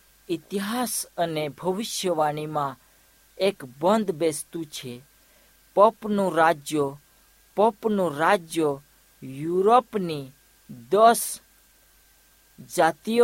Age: 50-69